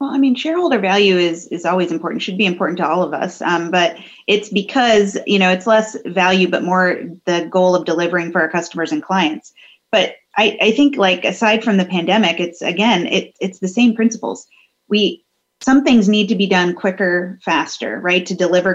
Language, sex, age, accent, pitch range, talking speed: English, female, 30-49, American, 170-205 Hz, 205 wpm